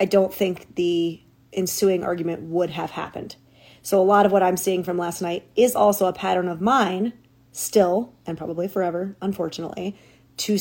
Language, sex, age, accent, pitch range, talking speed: English, female, 30-49, American, 175-205 Hz, 175 wpm